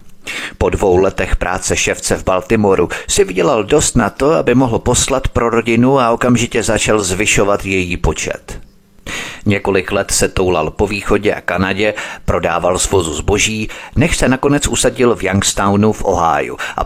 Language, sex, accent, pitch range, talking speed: Czech, male, native, 95-120 Hz, 155 wpm